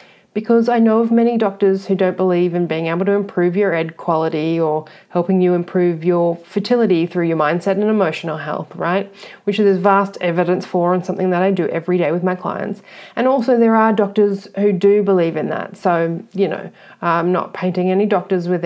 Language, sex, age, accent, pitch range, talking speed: English, female, 30-49, Australian, 175-210 Hz, 205 wpm